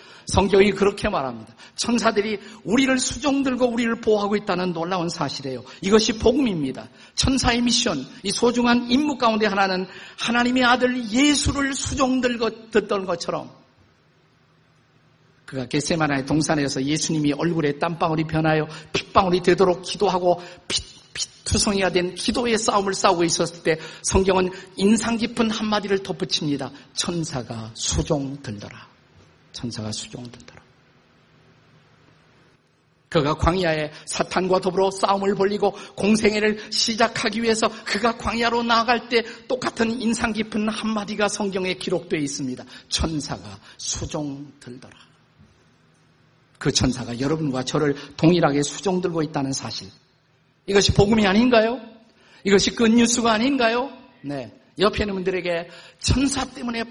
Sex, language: male, Korean